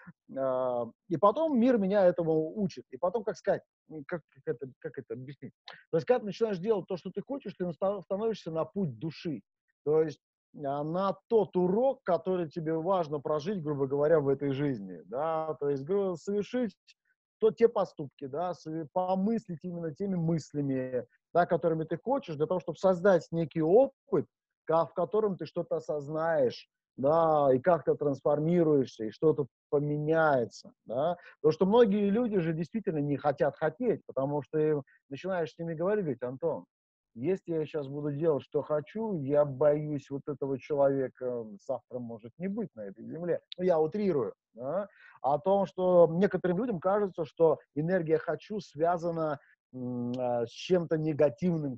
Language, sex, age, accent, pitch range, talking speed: Russian, male, 30-49, native, 145-190 Hz, 155 wpm